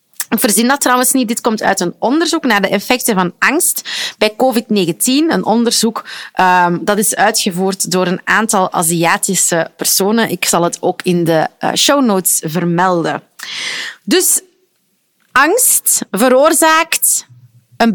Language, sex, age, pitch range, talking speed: Dutch, female, 30-49, 185-260 Hz, 135 wpm